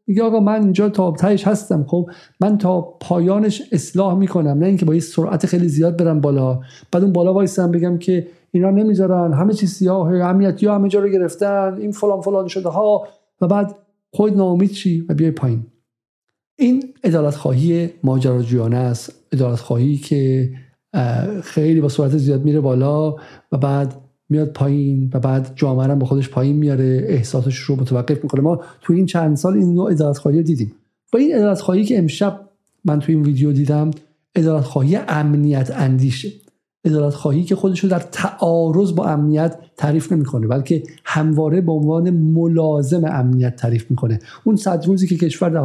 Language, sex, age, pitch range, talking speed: Persian, male, 50-69, 140-185 Hz, 165 wpm